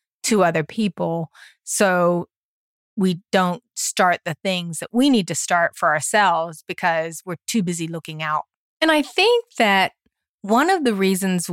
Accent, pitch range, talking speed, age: American, 170-230 Hz, 155 wpm, 30-49